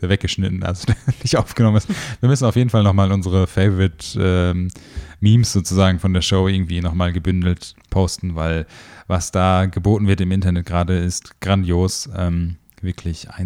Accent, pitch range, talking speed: German, 90-110 Hz, 150 wpm